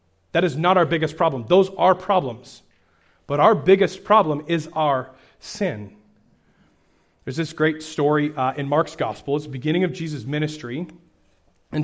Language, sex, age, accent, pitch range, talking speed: English, male, 30-49, American, 145-190 Hz, 155 wpm